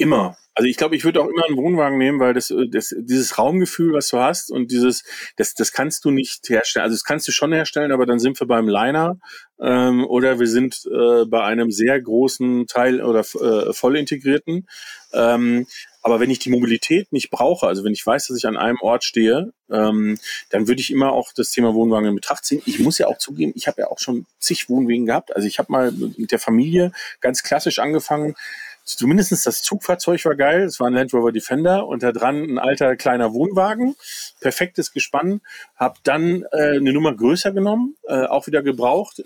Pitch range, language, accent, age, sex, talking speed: 120-165 Hz, German, German, 40-59, male, 210 wpm